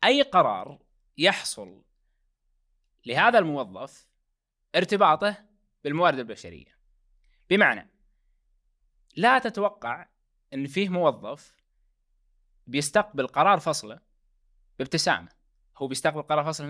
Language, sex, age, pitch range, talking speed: Arabic, male, 20-39, 135-190 Hz, 80 wpm